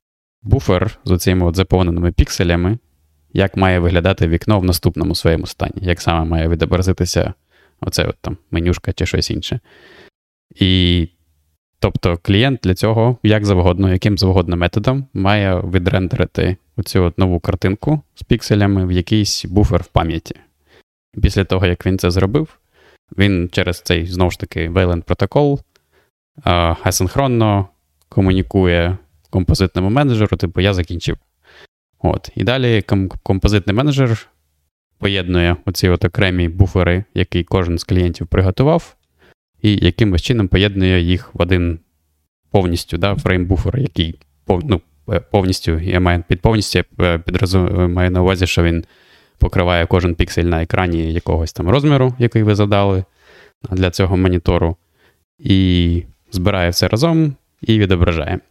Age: 20-39